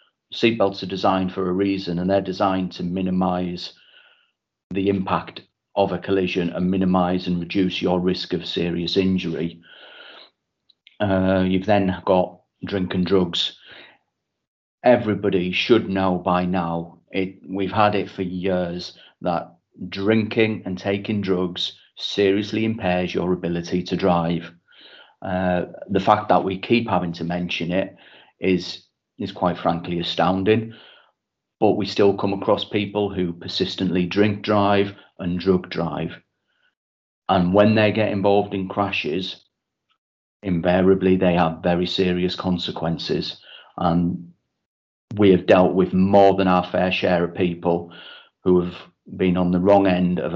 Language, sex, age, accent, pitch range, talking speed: English, male, 40-59, British, 90-100 Hz, 135 wpm